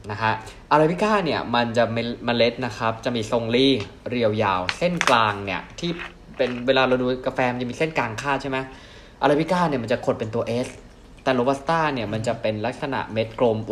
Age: 20-39